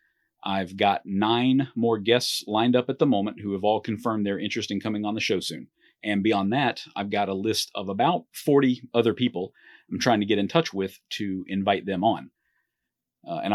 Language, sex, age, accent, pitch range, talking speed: English, male, 40-59, American, 100-120 Hz, 210 wpm